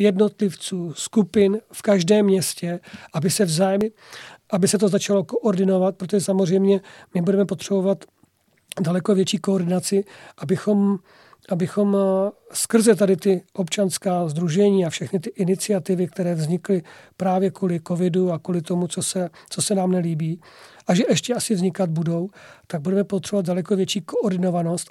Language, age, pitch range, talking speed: Czech, 40-59, 175-200 Hz, 140 wpm